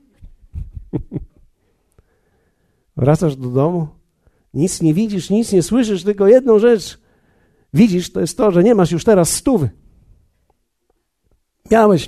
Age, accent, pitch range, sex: 50-69, native, 130-180 Hz, male